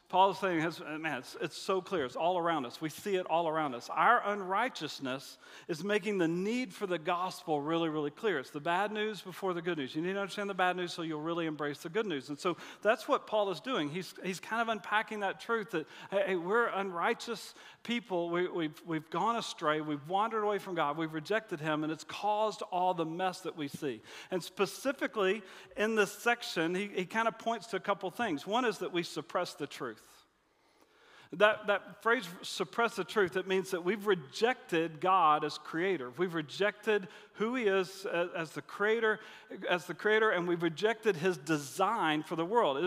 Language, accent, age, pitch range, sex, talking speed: English, American, 40-59, 165-210 Hz, male, 205 wpm